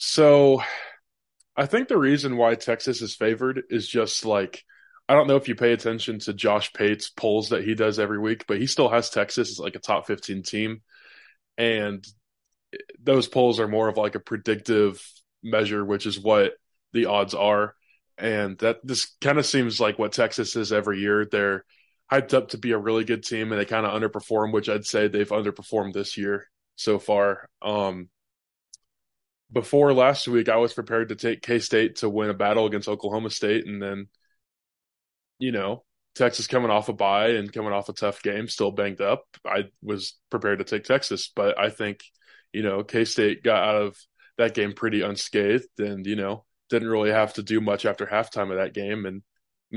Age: 20-39